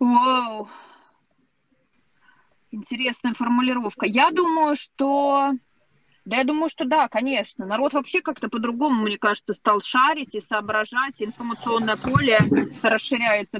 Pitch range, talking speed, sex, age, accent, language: 225-280 Hz, 105 wpm, female, 20-39, native, Russian